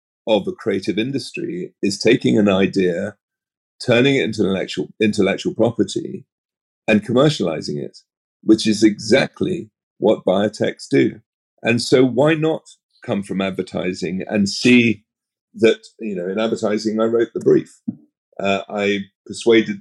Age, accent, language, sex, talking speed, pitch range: 40-59, British, English, male, 135 wpm, 95-125 Hz